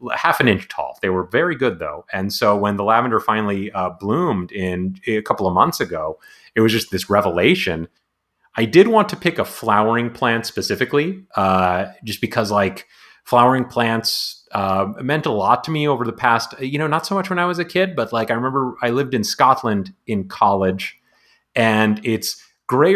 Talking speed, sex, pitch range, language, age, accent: 195 wpm, male, 100-125 Hz, English, 30-49, American